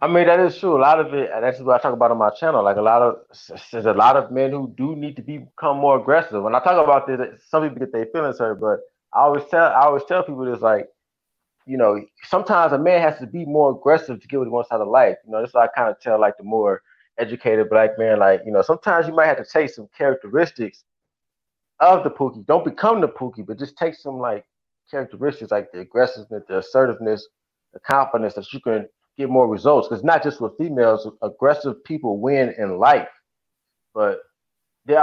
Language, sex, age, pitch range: English, male, 20-39, 115-155 Hz